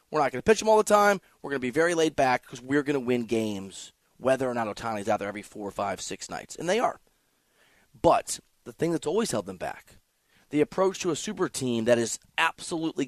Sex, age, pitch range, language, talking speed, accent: male, 30-49, 125-170 Hz, English, 245 wpm, American